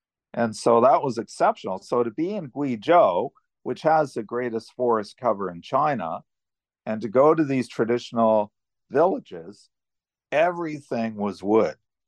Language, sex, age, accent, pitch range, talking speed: English, male, 50-69, American, 110-155 Hz, 140 wpm